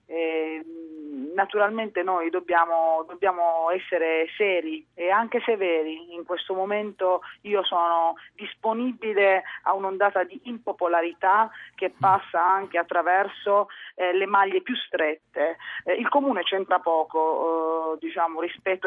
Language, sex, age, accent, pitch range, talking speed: Italian, female, 30-49, native, 165-195 Hz, 100 wpm